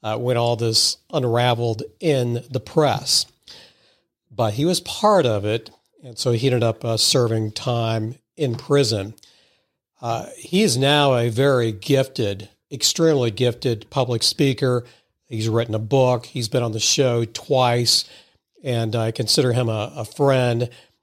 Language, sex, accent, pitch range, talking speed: English, male, American, 115-145 Hz, 150 wpm